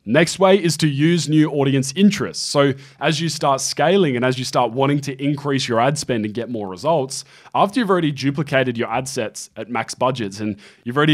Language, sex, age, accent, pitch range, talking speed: English, male, 20-39, Australian, 125-150 Hz, 215 wpm